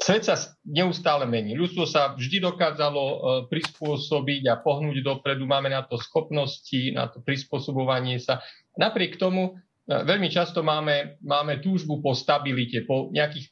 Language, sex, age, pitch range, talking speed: Slovak, male, 40-59, 130-150 Hz, 140 wpm